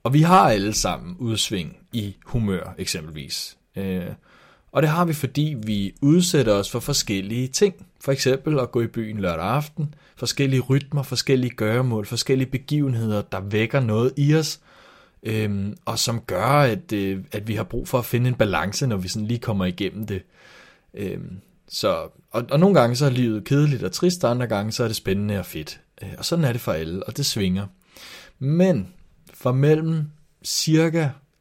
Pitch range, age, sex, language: 105-140 Hz, 30-49, male, Danish